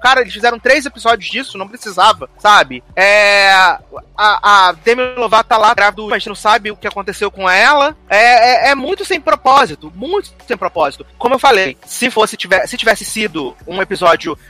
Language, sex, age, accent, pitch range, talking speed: Portuguese, male, 30-49, Brazilian, 185-255 Hz, 175 wpm